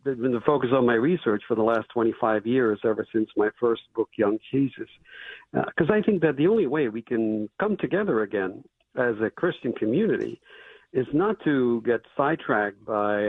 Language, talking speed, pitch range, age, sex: English, 185 wpm, 110-150 Hz, 60-79, male